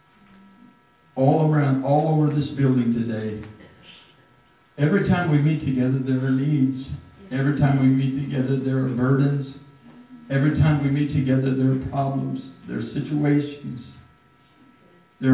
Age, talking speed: 60-79, 135 wpm